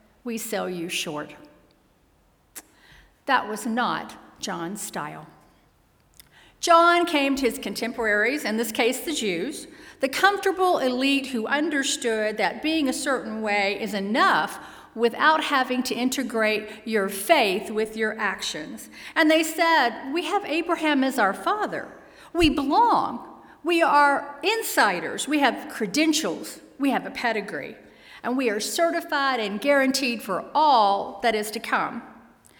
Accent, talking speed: American, 135 wpm